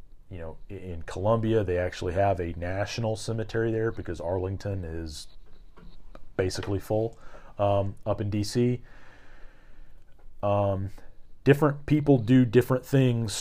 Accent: American